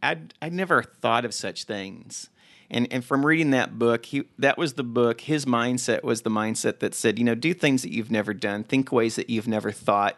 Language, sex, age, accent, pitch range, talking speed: English, male, 40-59, American, 105-130 Hz, 230 wpm